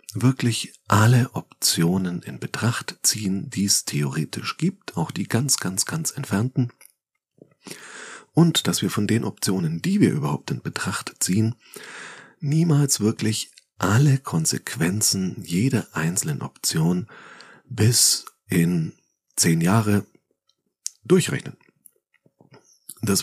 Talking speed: 105 wpm